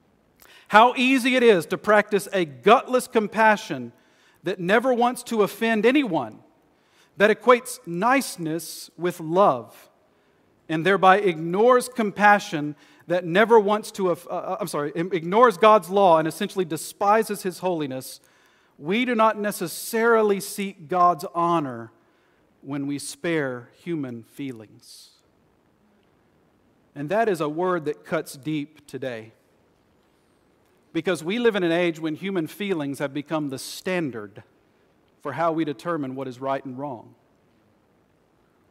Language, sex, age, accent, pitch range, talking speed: English, male, 40-59, American, 145-200 Hz, 125 wpm